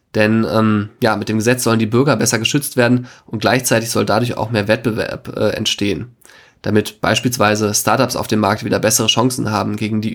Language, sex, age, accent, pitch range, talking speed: German, male, 20-39, German, 110-130 Hz, 195 wpm